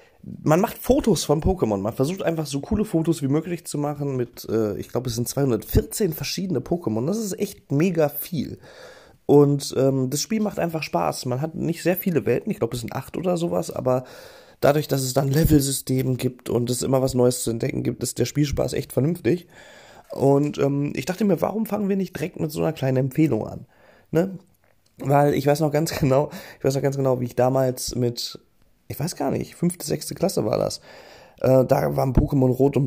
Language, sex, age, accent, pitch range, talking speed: German, male, 30-49, German, 125-150 Hz, 210 wpm